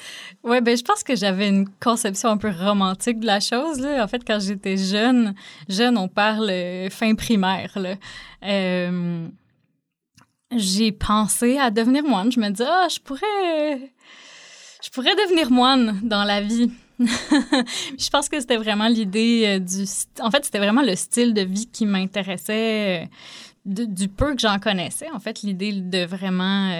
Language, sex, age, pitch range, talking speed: French, female, 20-39, 195-260 Hz, 165 wpm